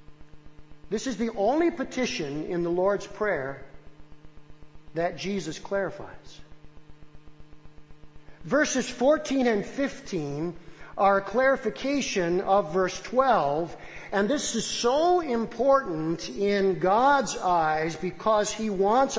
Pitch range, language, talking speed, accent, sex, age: 150-230 Hz, English, 100 wpm, American, male, 50-69